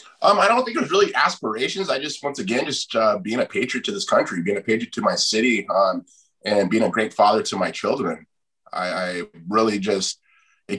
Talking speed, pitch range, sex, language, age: 220 wpm, 95-110 Hz, male, English, 20-39